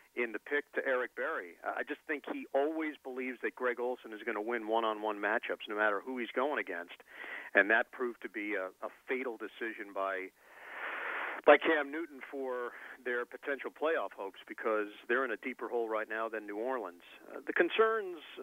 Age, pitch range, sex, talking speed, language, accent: 40-59, 110-175 Hz, male, 190 wpm, English, American